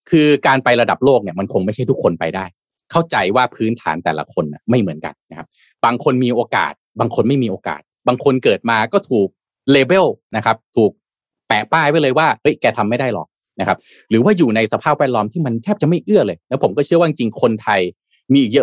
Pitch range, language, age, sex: 95-135 Hz, Thai, 20-39, male